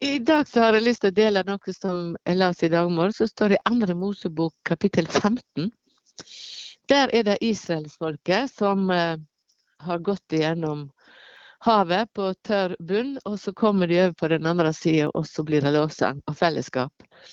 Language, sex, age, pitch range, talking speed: English, female, 60-79, 160-215 Hz, 165 wpm